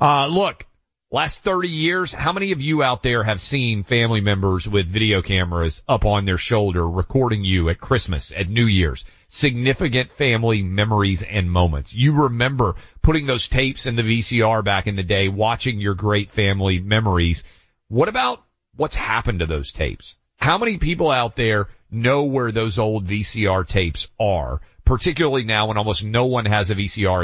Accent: American